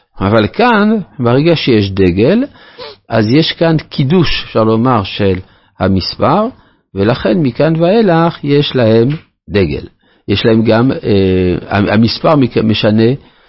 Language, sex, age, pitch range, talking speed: Hebrew, male, 50-69, 95-140 Hz, 110 wpm